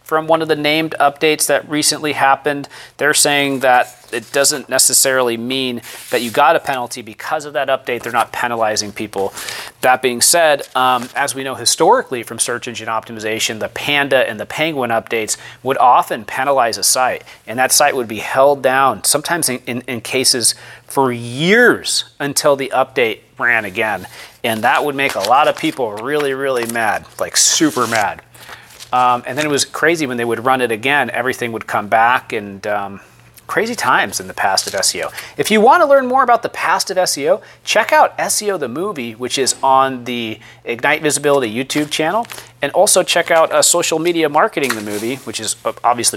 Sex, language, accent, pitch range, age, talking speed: male, English, American, 120-165 Hz, 30-49, 190 wpm